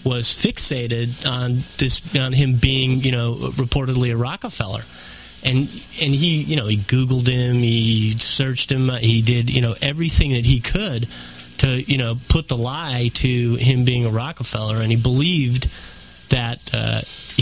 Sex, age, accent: male, 30-49, American